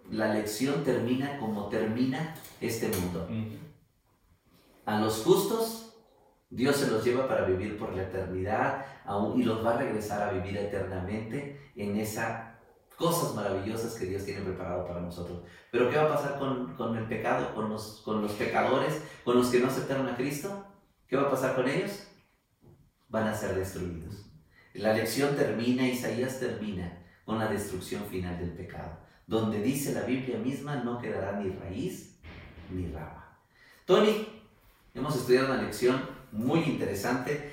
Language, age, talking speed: Spanish, 40-59, 155 wpm